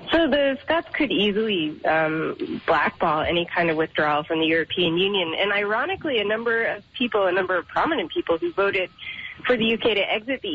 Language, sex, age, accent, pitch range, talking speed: English, female, 30-49, American, 180-220 Hz, 195 wpm